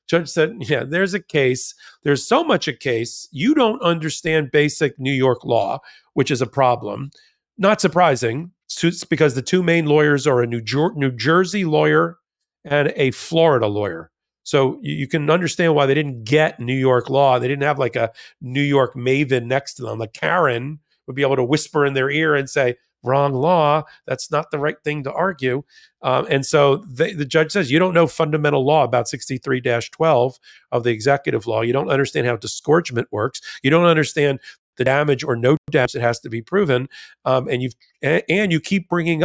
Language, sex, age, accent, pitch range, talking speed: English, male, 40-59, American, 130-170 Hz, 200 wpm